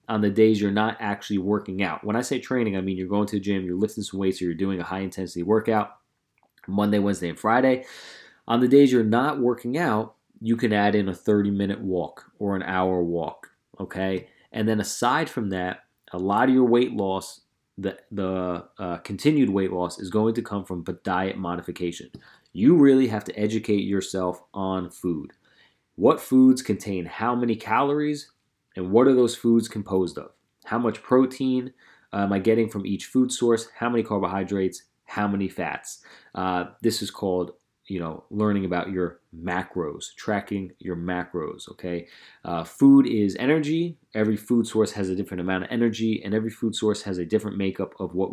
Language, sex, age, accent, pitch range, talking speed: English, male, 30-49, American, 95-115 Hz, 190 wpm